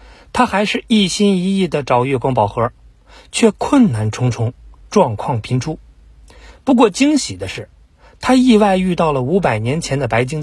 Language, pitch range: Chinese, 120-195 Hz